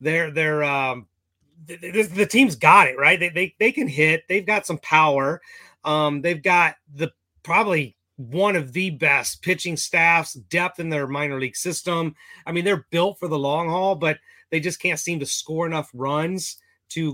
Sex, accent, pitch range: male, American, 145-175 Hz